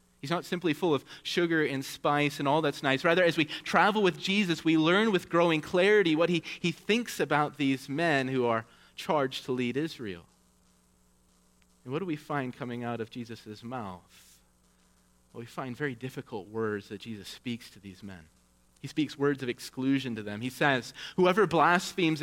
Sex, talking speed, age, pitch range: male, 185 wpm, 30-49, 110-175 Hz